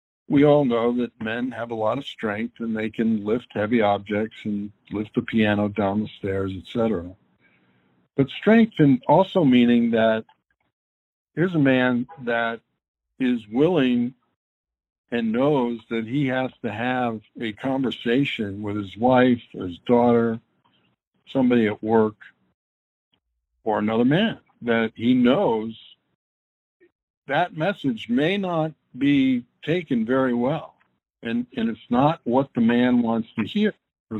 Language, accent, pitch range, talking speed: English, American, 100-135 Hz, 140 wpm